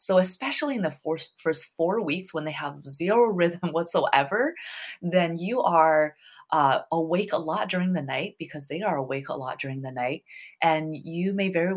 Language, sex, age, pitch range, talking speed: English, female, 20-39, 145-185 Hz, 185 wpm